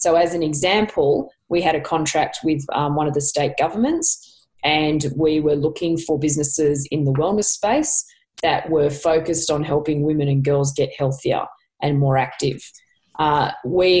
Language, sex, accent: English, female, Australian